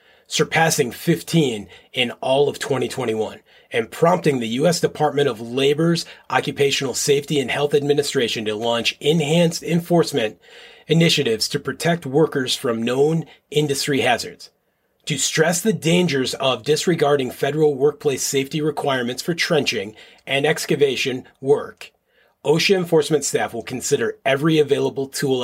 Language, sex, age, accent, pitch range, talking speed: English, male, 30-49, American, 140-170 Hz, 125 wpm